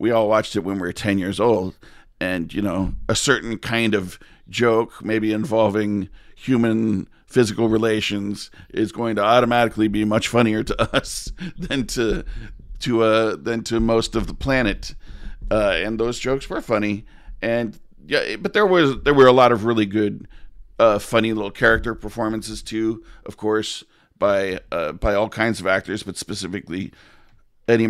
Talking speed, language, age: 170 wpm, English, 50-69